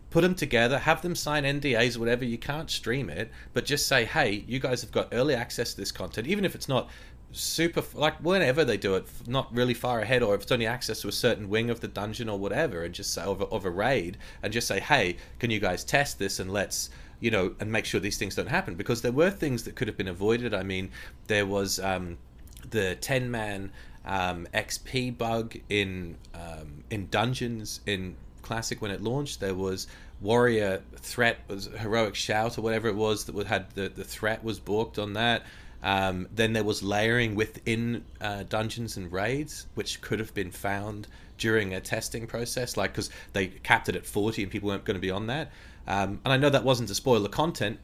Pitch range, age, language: 95-120 Hz, 30-49, English